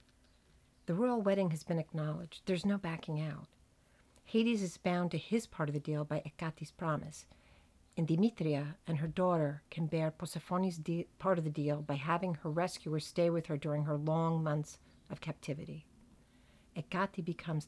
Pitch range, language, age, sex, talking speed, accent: 150-185 Hz, English, 50-69, female, 165 wpm, American